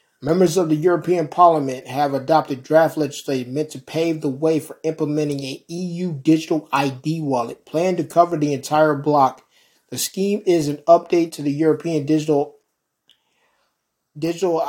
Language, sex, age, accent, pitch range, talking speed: English, male, 30-49, American, 145-170 Hz, 150 wpm